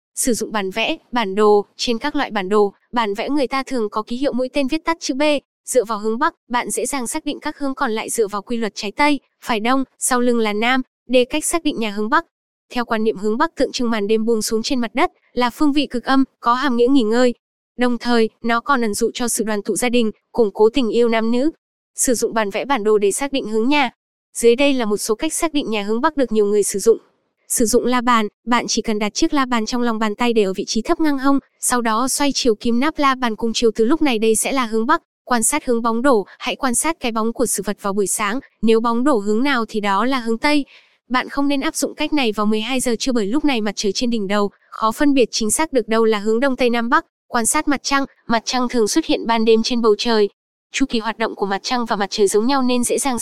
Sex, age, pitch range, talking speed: female, 10-29, 220-275 Hz, 285 wpm